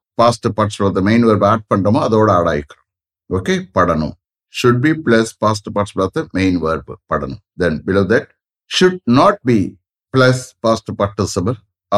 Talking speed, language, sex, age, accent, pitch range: 140 wpm, English, male, 60-79, Indian, 100-130 Hz